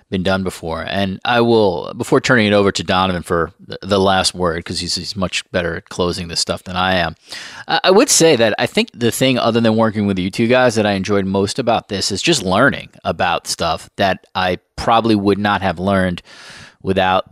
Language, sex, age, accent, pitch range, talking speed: English, male, 30-49, American, 95-115 Hz, 220 wpm